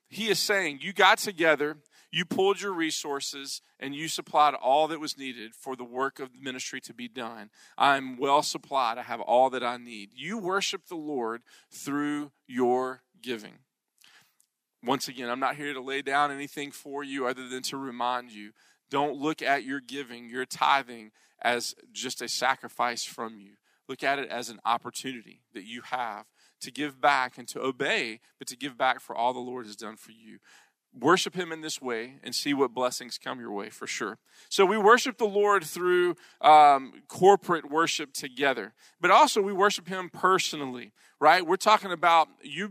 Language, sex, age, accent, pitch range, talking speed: English, male, 40-59, American, 130-180 Hz, 185 wpm